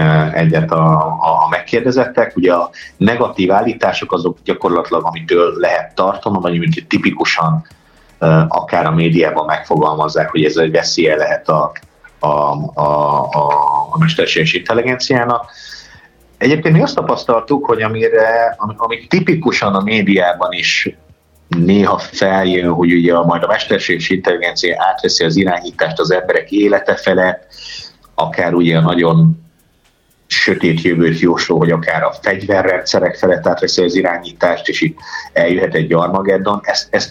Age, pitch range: 30-49, 80-105 Hz